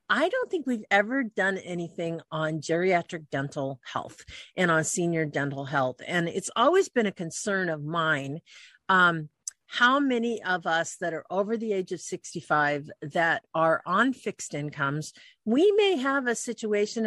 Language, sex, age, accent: English, female, 50-69, American